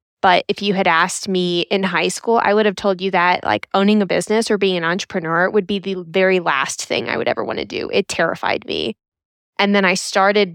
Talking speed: 240 wpm